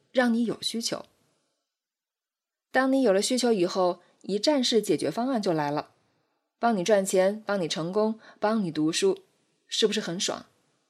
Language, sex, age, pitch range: Chinese, female, 20-39, 180-245 Hz